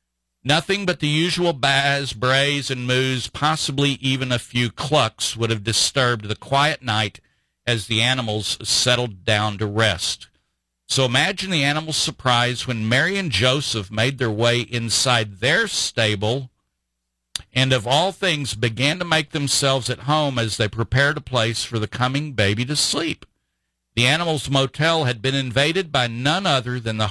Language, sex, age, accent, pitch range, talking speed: English, male, 50-69, American, 110-145 Hz, 160 wpm